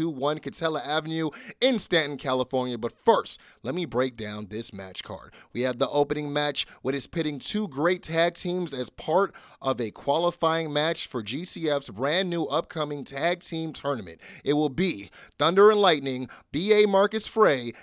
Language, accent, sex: English, American, male